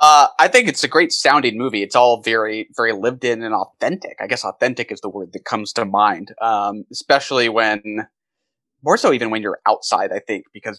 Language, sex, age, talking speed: English, male, 20-39, 210 wpm